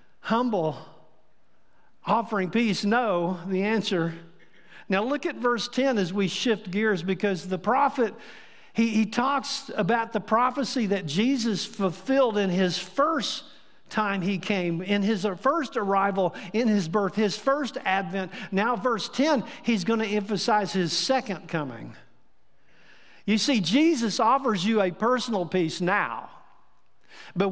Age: 50-69